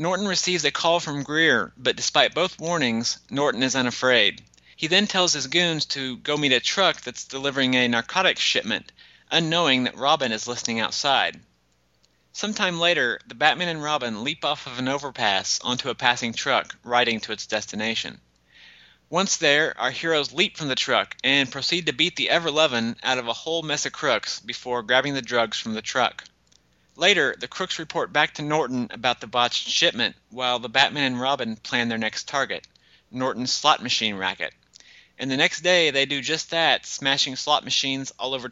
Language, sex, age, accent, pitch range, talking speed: English, male, 30-49, American, 120-160 Hz, 185 wpm